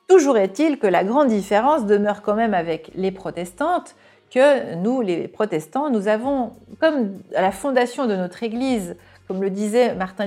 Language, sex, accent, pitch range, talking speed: French, female, French, 180-245 Hz, 170 wpm